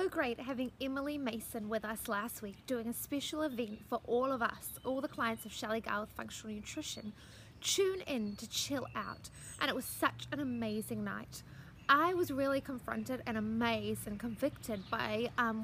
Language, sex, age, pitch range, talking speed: English, female, 20-39, 225-290 Hz, 175 wpm